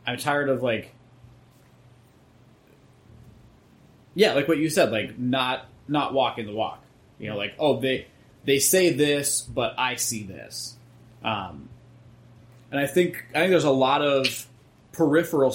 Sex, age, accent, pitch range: male, 20-39, American, 120-140 Hz